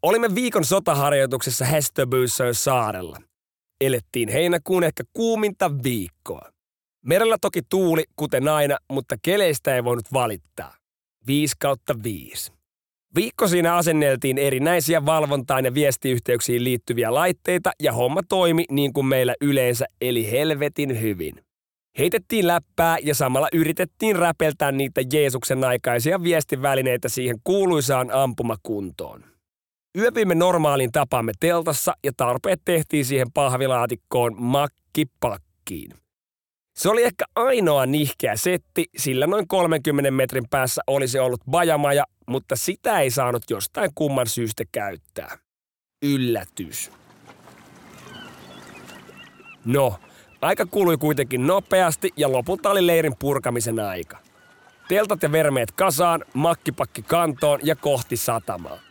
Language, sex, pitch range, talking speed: Finnish, male, 130-170 Hz, 110 wpm